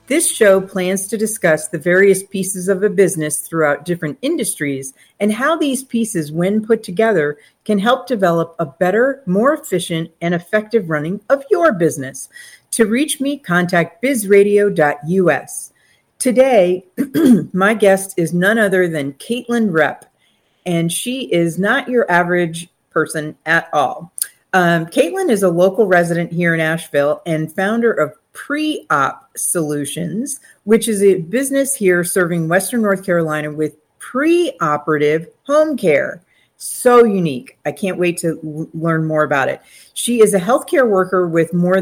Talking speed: 145 wpm